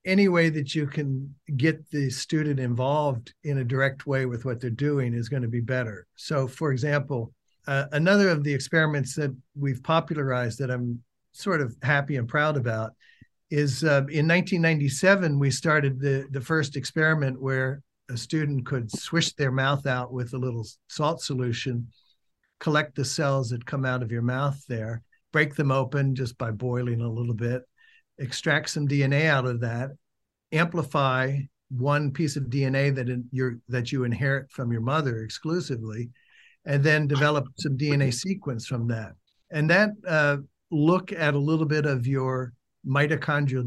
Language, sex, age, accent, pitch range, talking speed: English, male, 60-79, American, 125-150 Hz, 170 wpm